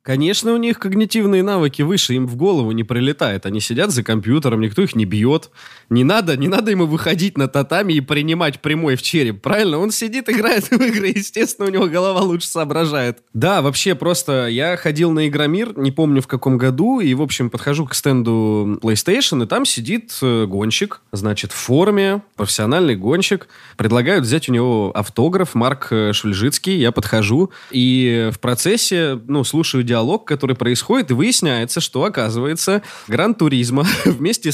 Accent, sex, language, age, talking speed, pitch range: native, male, Russian, 20-39, 165 wpm, 120-165 Hz